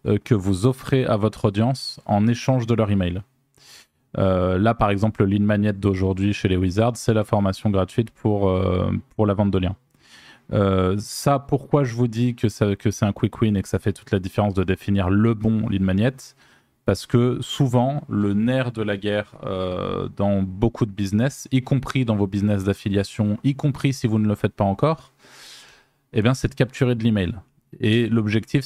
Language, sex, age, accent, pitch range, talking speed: French, male, 20-39, French, 100-125 Hz, 205 wpm